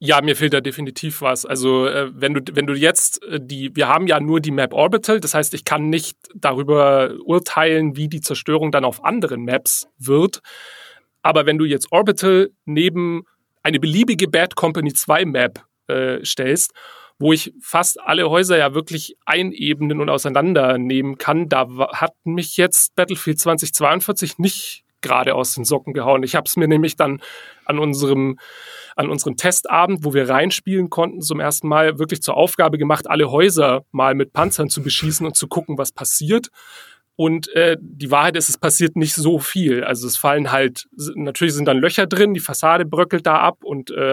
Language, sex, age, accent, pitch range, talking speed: German, male, 30-49, German, 140-165 Hz, 175 wpm